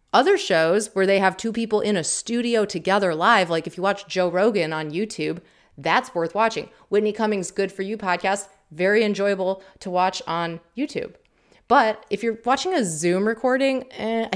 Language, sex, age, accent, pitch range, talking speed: English, female, 30-49, American, 170-220 Hz, 180 wpm